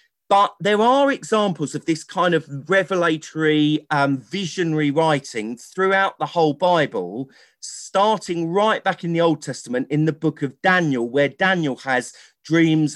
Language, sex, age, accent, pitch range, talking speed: English, male, 40-59, British, 145-185 Hz, 150 wpm